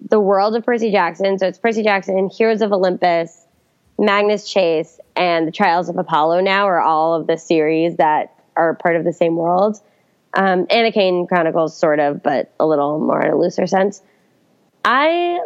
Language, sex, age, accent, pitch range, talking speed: English, female, 20-39, American, 180-225 Hz, 185 wpm